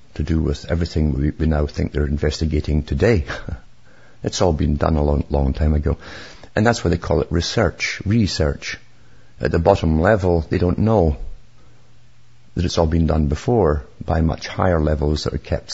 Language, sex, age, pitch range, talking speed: English, male, 50-69, 75-110 Hz, 180 wpm